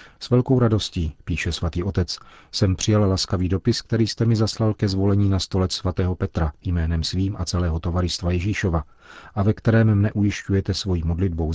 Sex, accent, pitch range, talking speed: male, native, 85-105 Hz, 170 wpm